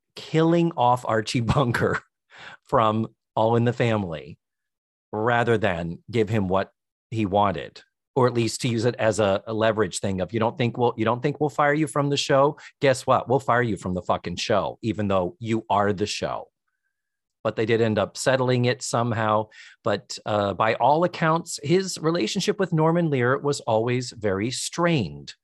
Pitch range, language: 110-145 Hz, English